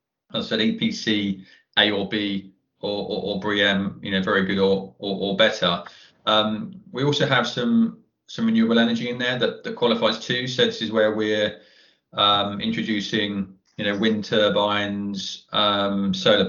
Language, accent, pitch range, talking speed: English, British, 100-120 Hz, 165 wpm